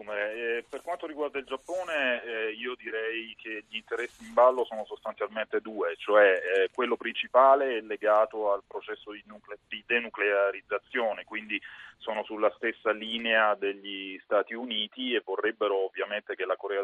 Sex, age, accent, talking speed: male, 30-49, native, 155 wpm